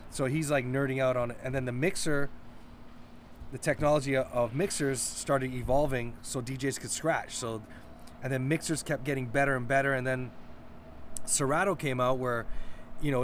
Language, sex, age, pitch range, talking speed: English, male, 20-39, 120-145 Hz, 170 wpm